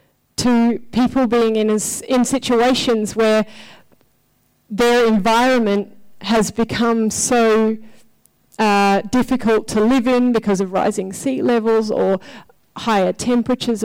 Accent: Australian